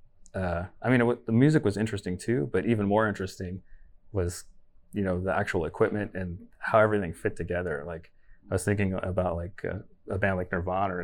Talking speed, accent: 200 wpm, American